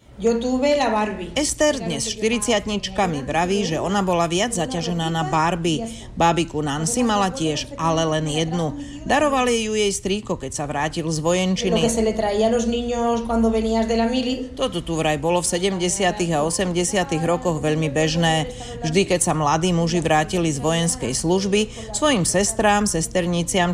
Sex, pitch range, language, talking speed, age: female, 155-215 Hz, Czech, 130 wpm, 40-59